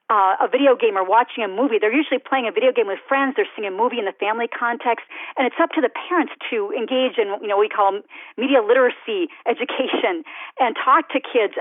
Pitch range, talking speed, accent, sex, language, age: 235-360 Hz, 235 wpm, American, female, English, 40-59